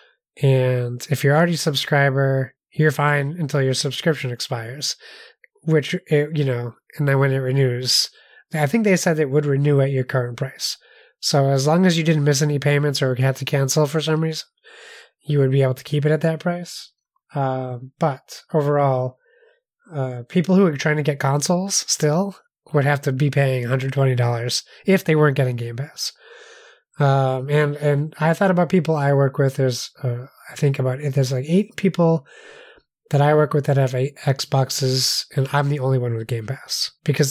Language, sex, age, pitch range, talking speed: English, male, 20-39, 135-160 Hz, 190 wpm